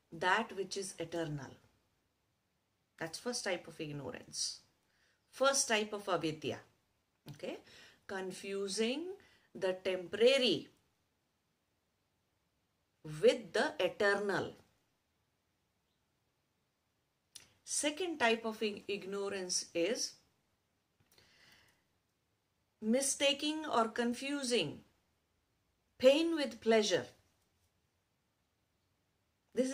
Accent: Indian